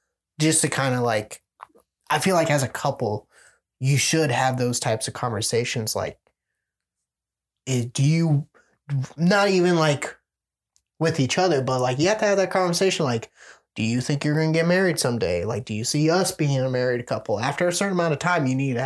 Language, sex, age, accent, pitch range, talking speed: English, male, 20-39, American, 125-170 Hz, 195 wpm